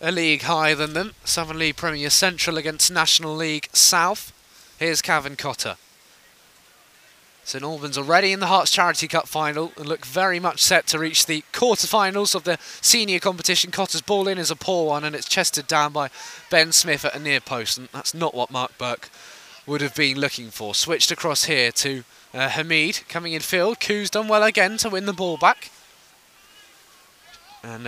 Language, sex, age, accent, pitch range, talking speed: English, male, 20-39, British, 130-165 Hz, 185 wpm